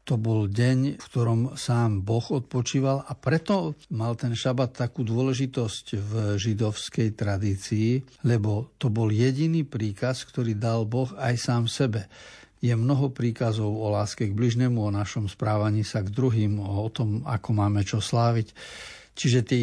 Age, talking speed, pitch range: 60-79, 150 wpm, 110-130 Hz